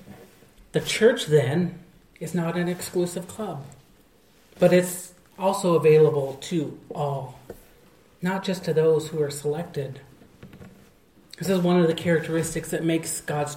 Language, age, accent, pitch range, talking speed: English, 40-59, American, 155-190 Hz, 135 wpm